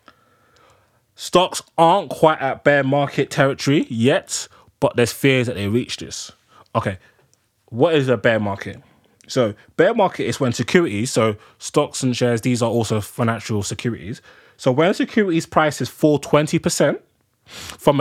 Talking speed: 145 wpm